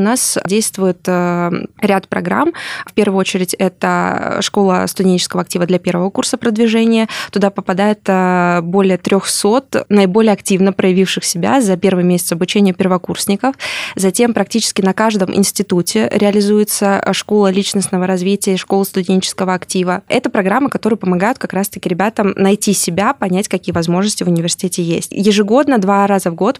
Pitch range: 180-210 Hz